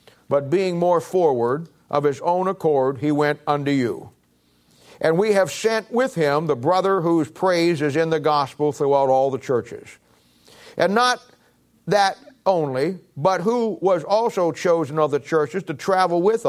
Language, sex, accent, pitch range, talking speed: English, male, American, 140-170 Hz, 165 wpm